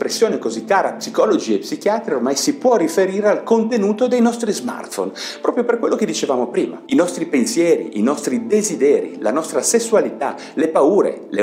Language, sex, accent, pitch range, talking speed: Italian, male, native, 205-270 Hz, 170 wpm